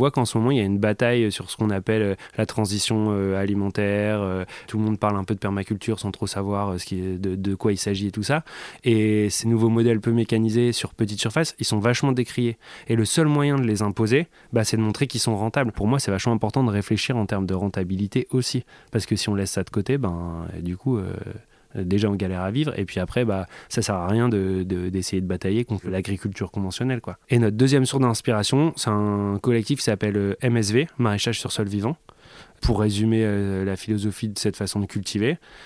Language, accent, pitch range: French, French, 100-120 Hz